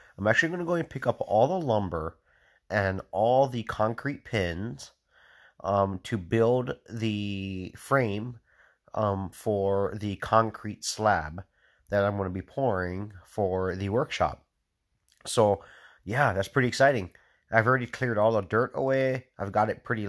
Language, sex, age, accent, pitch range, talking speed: English, male, 30-49, American, 100-120 Hz, 150 wpm